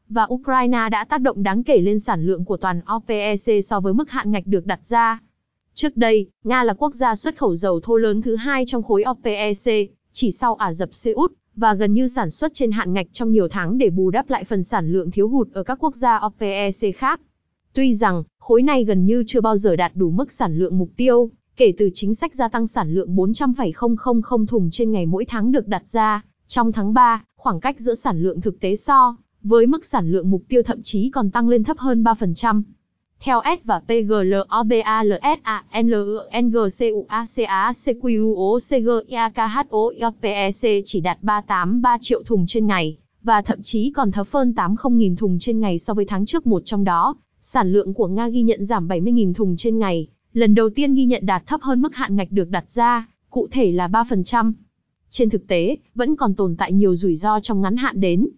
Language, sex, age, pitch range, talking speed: Vietnamese, female, 20-39, 200-240 Hz, 205 wpm